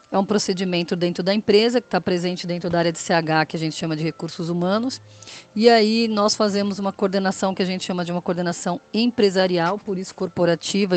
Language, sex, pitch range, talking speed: Portuguese, female, 180-225 Hz, 210 wpm